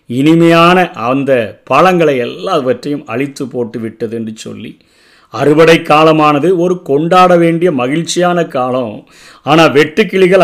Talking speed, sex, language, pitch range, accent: 105 wpm, male, Tamil, 140-180 Hz, native